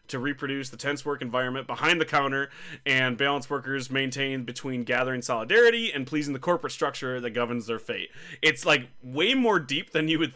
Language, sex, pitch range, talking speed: English, male, 125-150 Hz, 190 wpm